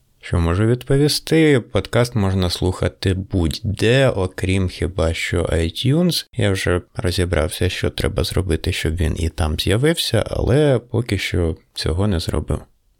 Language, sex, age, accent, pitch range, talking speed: Ukrainian, male, 30-49, native, 90-115 Hz, 130 wpm